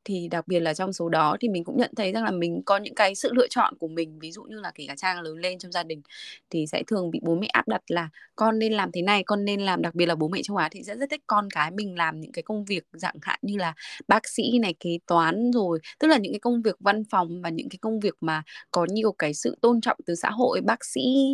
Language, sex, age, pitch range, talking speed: Vietnamese, female, 20-39, 165-220 Hz, 300 wpm